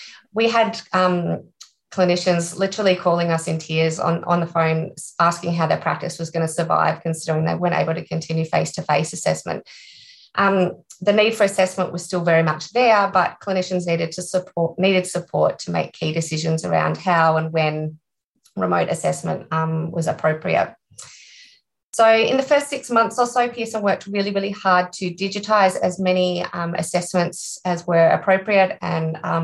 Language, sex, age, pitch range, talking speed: English, female, 30-49, 165-195 Hz, 165 wpm